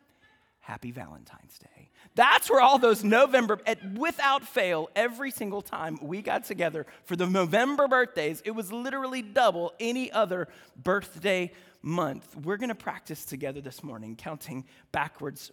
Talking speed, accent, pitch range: 145 wpm, American, 145-205 Hz